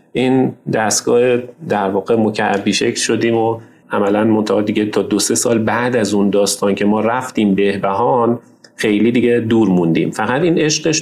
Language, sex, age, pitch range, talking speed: Persian, male, 40-59, 105-125 Hz, 160 wpm